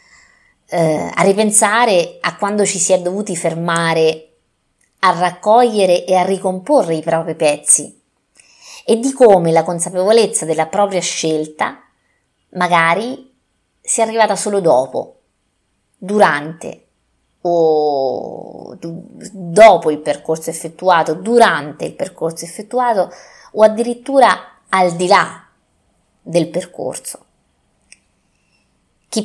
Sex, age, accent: female, 30-49, native